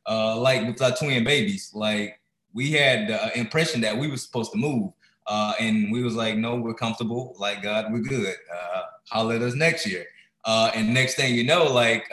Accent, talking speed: American, 210 wpm